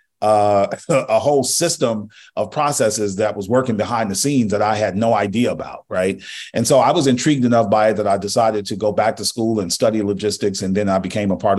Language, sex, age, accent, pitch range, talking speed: English, male, 40-59, American, 100-120 Hz, 230 wpm